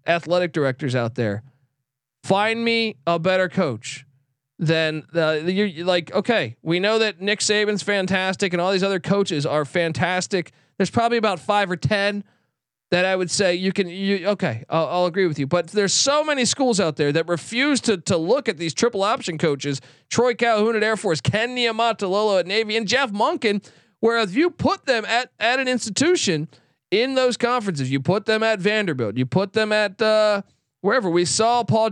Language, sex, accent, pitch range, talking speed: English, male, American, 160-220 Hz, 190 wpm